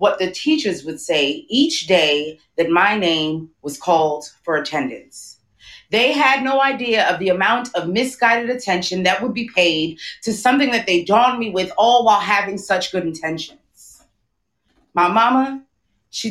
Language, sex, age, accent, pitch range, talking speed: English, female, 30-49, American, 185-255 Hz, 160 wpm